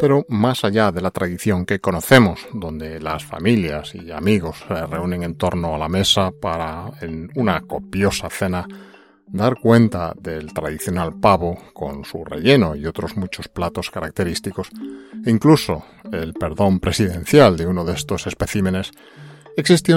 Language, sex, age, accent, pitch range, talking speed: Spanish, male, 40-59, Spanish, 90-115 Hz, 145 wpm